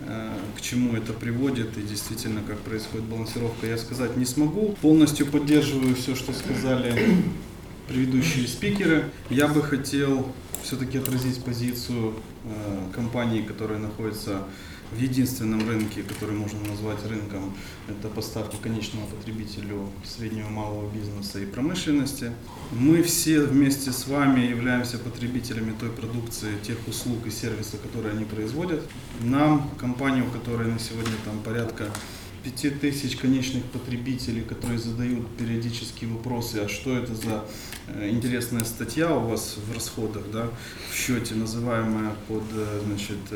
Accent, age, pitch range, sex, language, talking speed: native, 20-39, 105-130 Hz, male, Ukrainian, 125 wpm